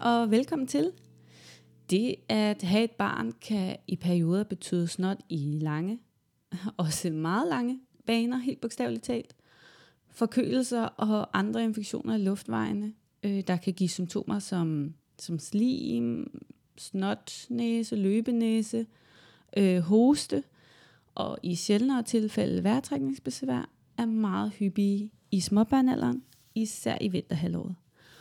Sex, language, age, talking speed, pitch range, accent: female, Danish, 20-39, 115 wpm, 150-225 Hz, native